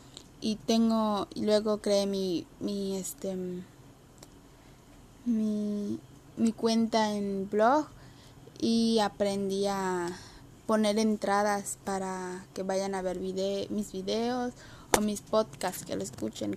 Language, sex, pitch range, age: Spanish, female, 175-220 Hz, 10-29